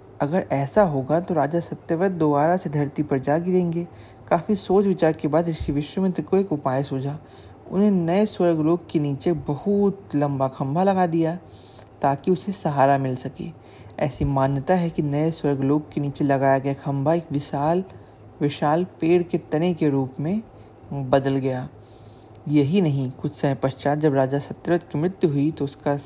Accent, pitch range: Indian, 135-175 Hz